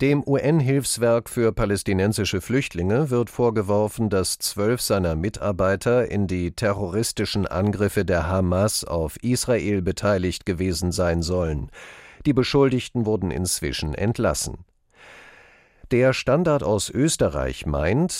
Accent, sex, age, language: German, male, 50-69, German